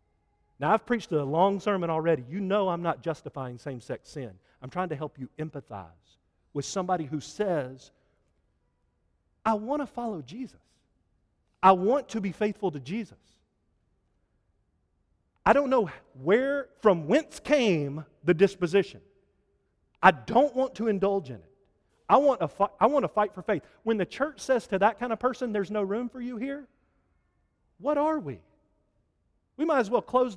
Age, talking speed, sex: 40-59, 170 wpm, male